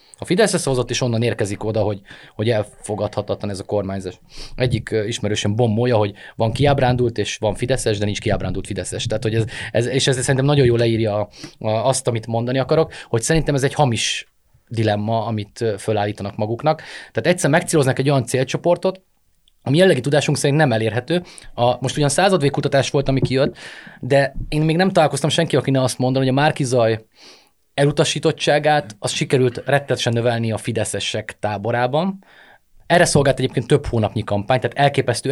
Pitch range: 110-145 Hz